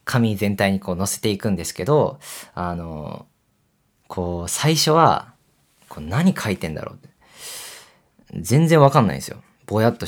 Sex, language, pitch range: male, Japanese, 95-140 Hz